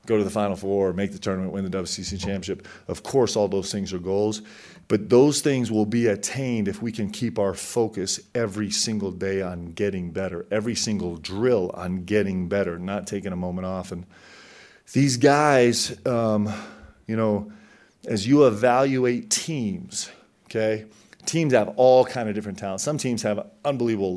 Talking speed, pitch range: 175 wpm, 100-120 Hz